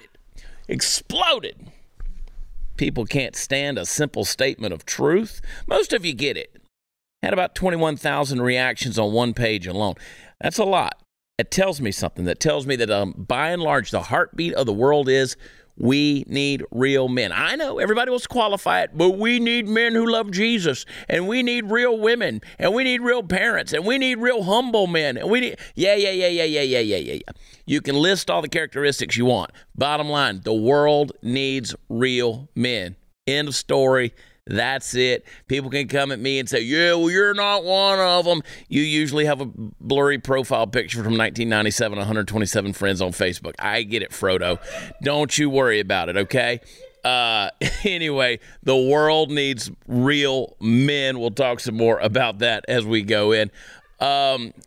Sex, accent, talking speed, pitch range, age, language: male, American, 180 wpm, 120-180 Hz, 40-59, English